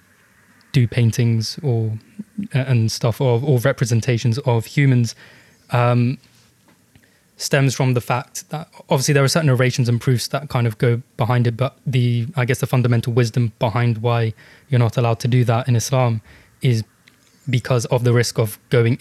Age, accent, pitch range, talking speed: 20-39, British, 115-135 Hz, 160 wpm